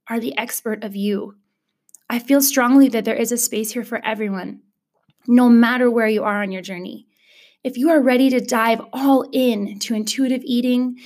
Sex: female